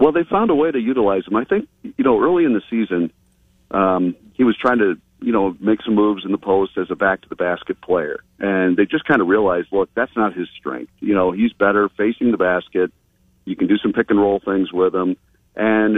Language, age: English, 50-69